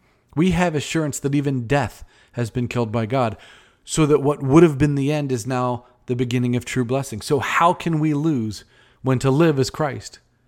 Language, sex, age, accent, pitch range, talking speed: English, male, 40-59, American, 120-155 Hz, 205 wpm